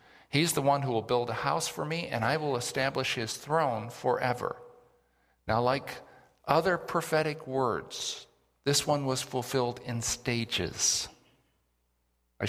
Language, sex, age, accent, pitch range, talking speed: English, male, 50-69, American, 110-145 Hz, 140 wpm